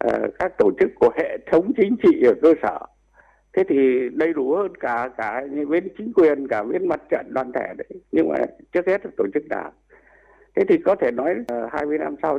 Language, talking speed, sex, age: Vietnamese, 220 wpm, male, 60-79